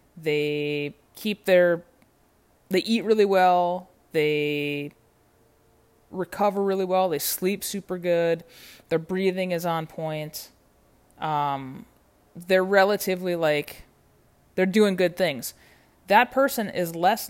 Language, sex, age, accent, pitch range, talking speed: English, female, 20-39, American, 145-185 Hz, 110 wpm